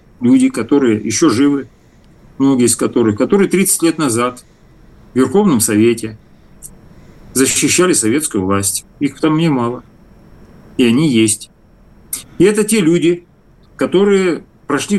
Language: Russian